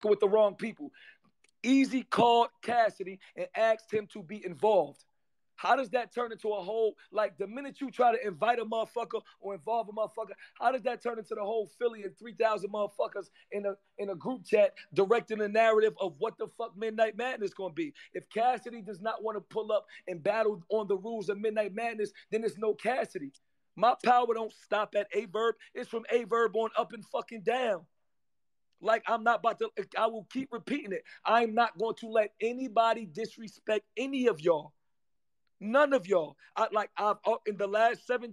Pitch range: 205-235 Hz